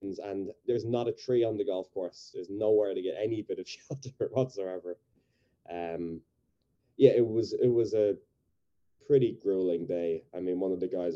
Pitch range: 85-115 Hz